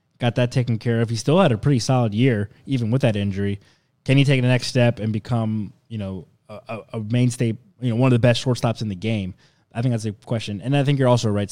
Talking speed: 260 wpm